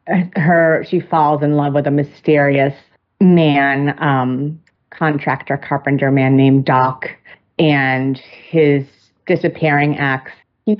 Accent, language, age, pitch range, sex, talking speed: American, English, 30-49, 140-180 Hz, female, 110 wpm